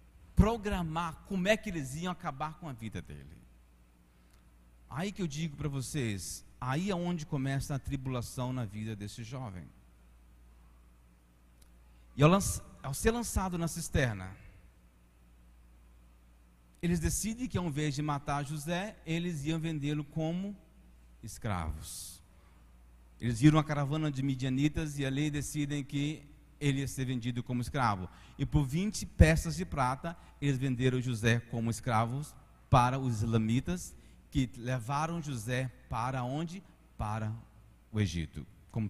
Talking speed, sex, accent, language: 135 wpm, male, Brazilian, Portuguese